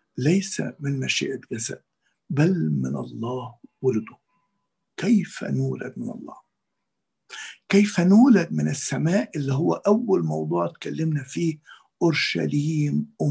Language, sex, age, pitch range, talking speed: Arabic, male, 50-69, 145-215 Hz, 105 wpm